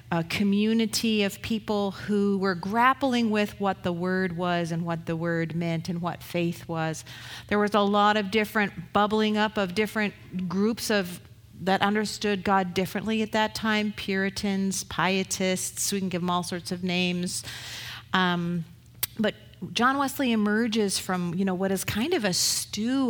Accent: American